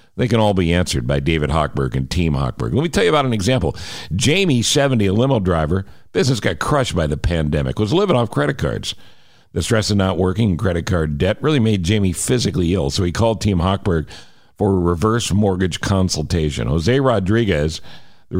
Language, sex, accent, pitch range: English, male, American, 85-110 Hz